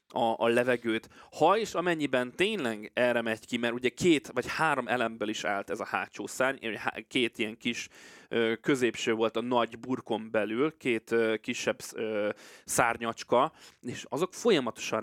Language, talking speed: Hungarian, 150 wpm